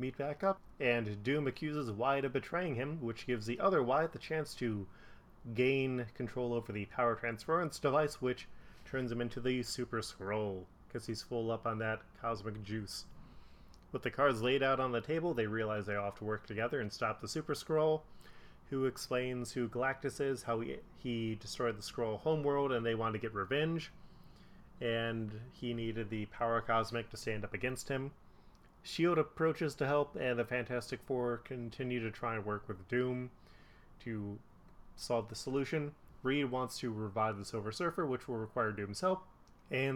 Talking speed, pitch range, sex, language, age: 185 wpm, 110-135 Hz, male, English, 30-49